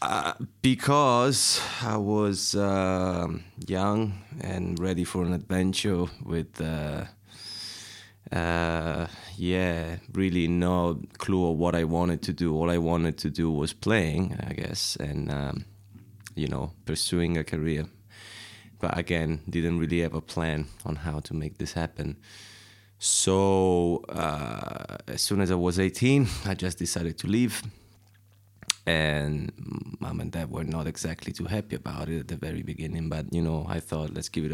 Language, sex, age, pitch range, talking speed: English, male, 20-39, 80-100 Hz, 155 wpm